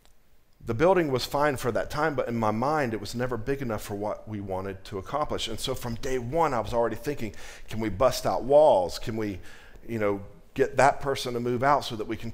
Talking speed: 245 wpm